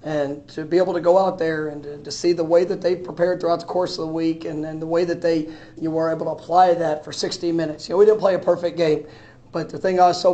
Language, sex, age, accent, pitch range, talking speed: English, male, 40-59, American, 155-175 Hz, 310 wpm